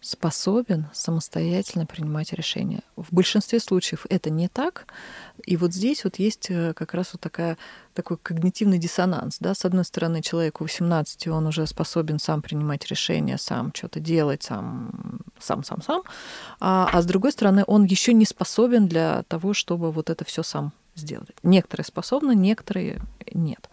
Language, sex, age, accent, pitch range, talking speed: Russian, female, 20-39, native, 160-195 Hz, 155 wpm